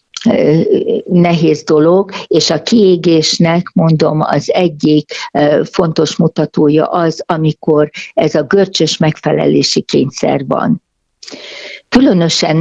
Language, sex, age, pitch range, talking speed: Hungarian, female, 60-79, 150-180 Hz, 90 wpm